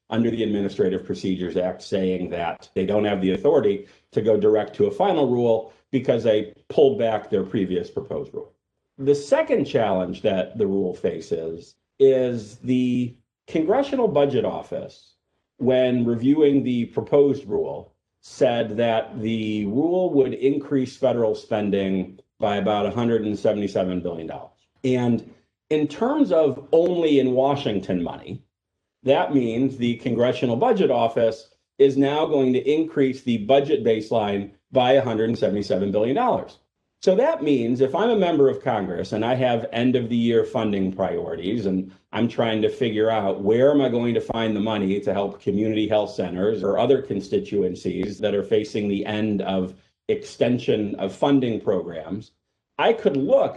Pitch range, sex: 105-135 Hz, male